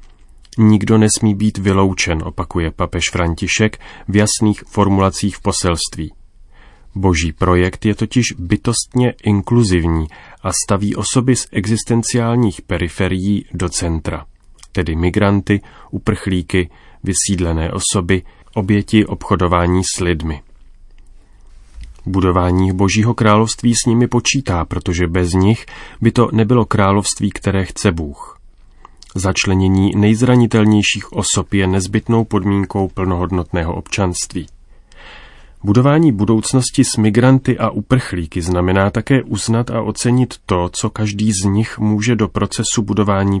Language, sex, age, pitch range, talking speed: Czech, male, 30-49, 90-110 Hz, 110 wpm